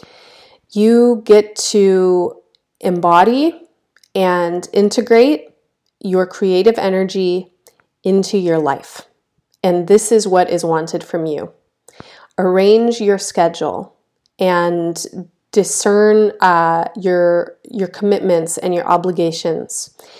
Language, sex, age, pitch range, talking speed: English, female, 30-49, 175-210 Hz, 95 wpm